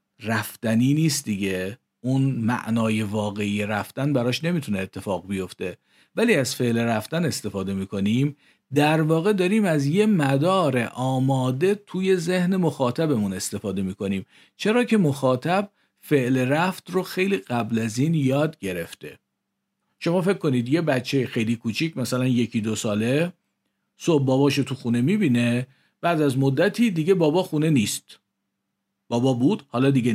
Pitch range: 120-170 Hz